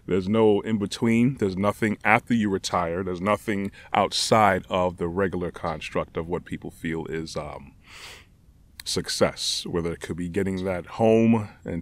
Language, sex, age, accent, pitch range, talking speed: English, male, 30-49, American, 90-105 Hz, 150 wpm